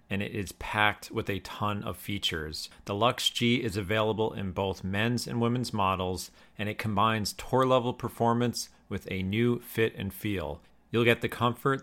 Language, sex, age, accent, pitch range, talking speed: English, male, 40-59, American, 95-115 Hz, 185 wpm